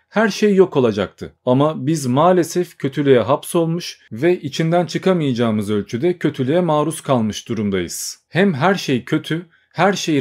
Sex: male